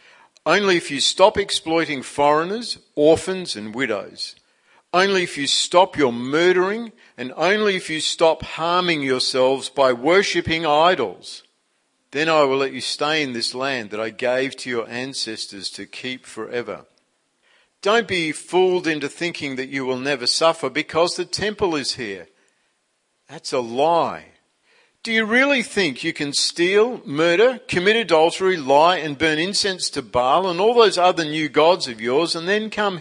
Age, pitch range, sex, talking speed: 50-69, 130-180 Hz, male, 160 wpm